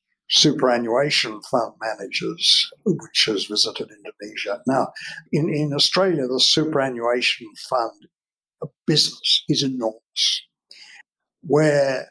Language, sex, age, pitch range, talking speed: English, male, 60-79, 125-170 Hz, 90 wpm